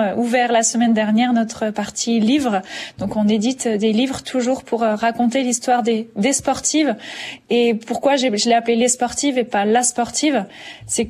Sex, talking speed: female, 175 wpm